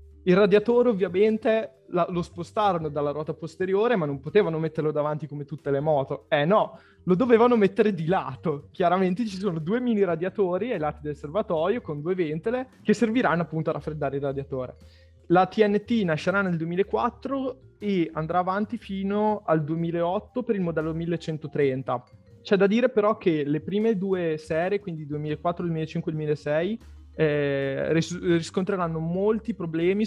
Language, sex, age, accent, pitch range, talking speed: Italian, male, 20-39, native, 150-205 Hz, 150 wpm